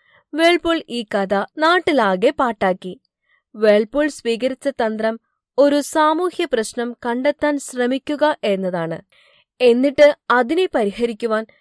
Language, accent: Malayalam, native